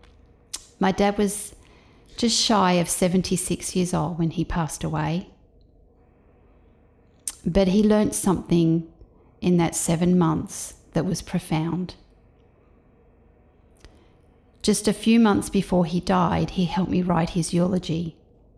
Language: English